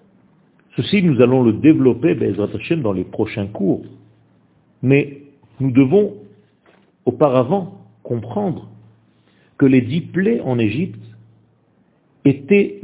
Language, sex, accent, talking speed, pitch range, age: French, male, French, 100 wpm, 105-145 Hz, 50-69